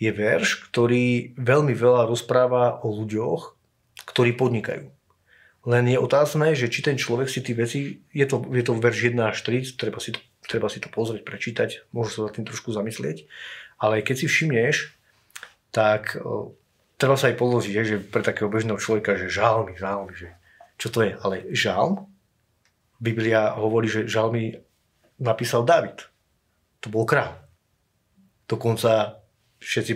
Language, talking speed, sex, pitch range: Slovak, 155 wpm, male, 105-125 Hz